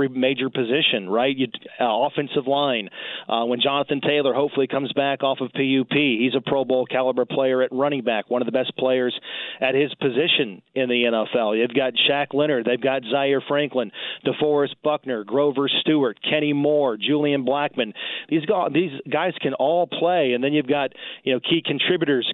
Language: English